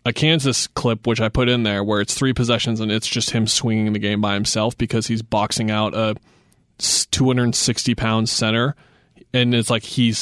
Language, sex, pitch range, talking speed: English, male, 110-125 Hz, 190 wpm